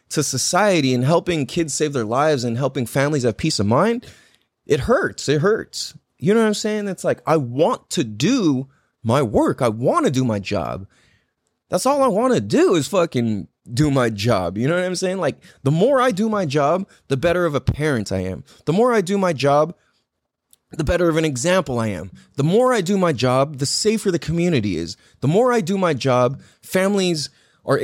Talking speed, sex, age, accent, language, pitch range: 215 wpm, male, 20-39, American, English, 125-180 Hz